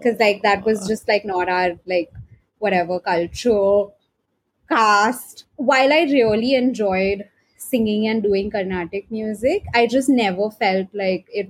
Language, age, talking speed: English, 20-39, 140 wpm